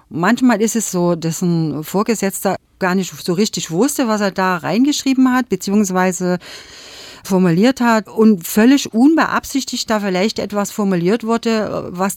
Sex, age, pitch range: female, 50-69, 160-220 Hz